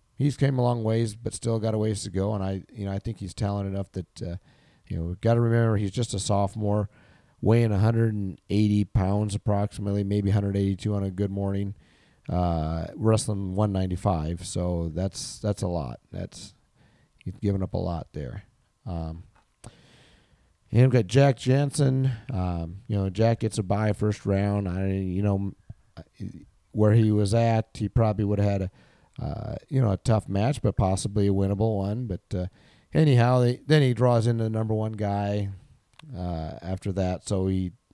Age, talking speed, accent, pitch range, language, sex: 40-59, 180 wpm, American, 95-115 Hz, English, male